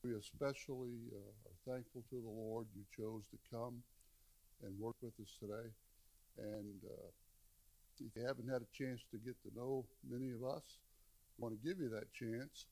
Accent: American